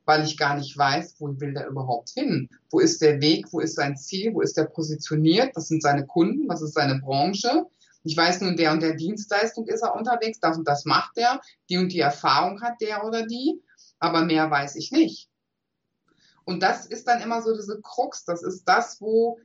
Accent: German